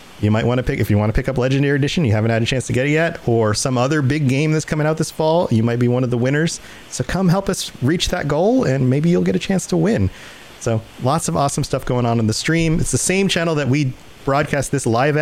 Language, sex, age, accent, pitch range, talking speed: English, male, 30-49, American, 115-165 Hz, 290 wpm